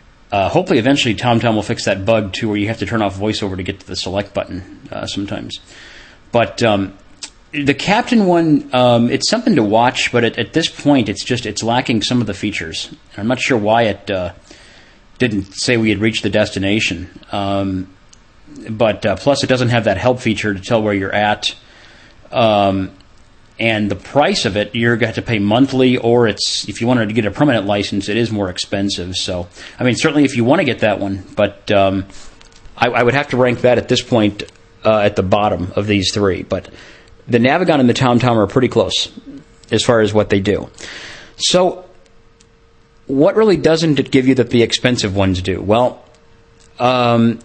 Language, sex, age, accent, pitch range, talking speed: English, male, 40-59, American, 100-125 Hz, 205 wpm